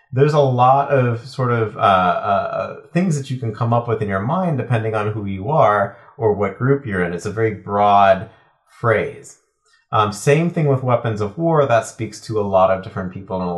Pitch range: 100-135 Hz